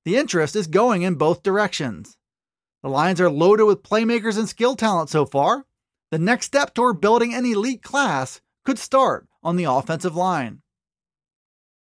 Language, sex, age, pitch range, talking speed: English, male, 30-49, 180-235 Hz, 165 wpm